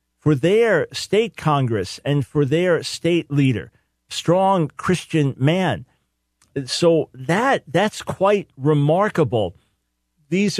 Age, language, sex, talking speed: 50-69, English, male, 100 wpm